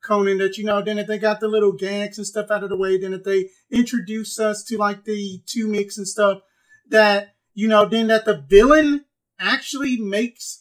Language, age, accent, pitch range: English, 40-59, American, 205-245 Hz